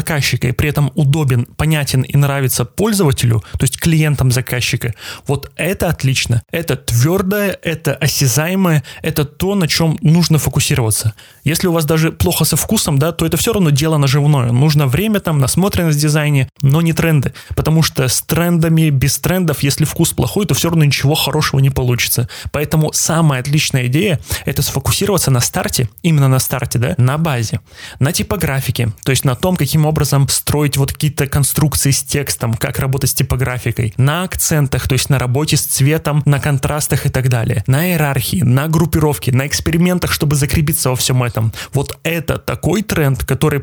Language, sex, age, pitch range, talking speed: Russian, male, 20-39, 130-155 Hz, 175 wpm